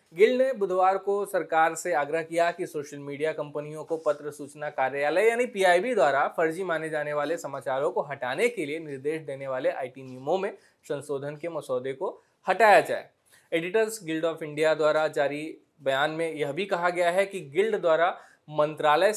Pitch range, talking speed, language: 150-190 Hz, 180 wpm, Hindi